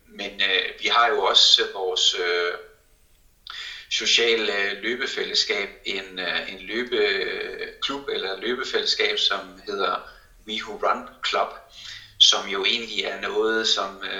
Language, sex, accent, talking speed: Danish, male, native, 115 wpm